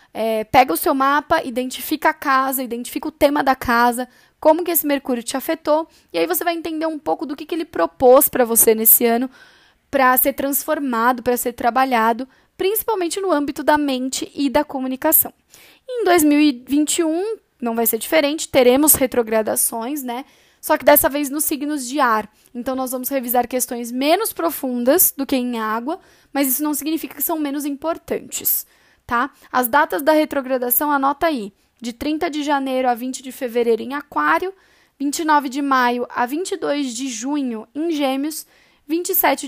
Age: 10-29